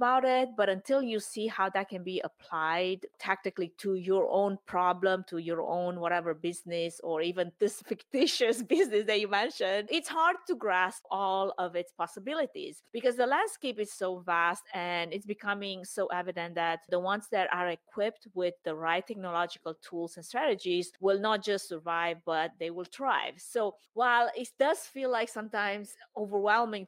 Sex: female